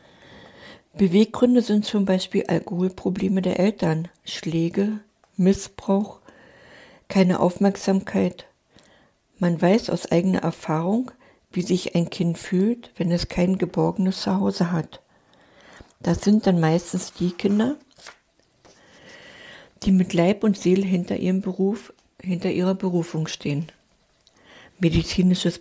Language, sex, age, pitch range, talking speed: German, female, 60-79, 165-195 Hz, 105 wpm